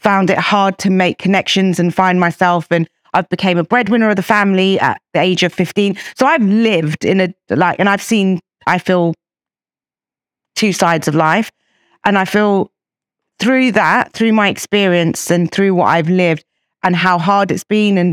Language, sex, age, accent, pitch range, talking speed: English, female, 30-49, British, 170-195 Hz, 185 wpm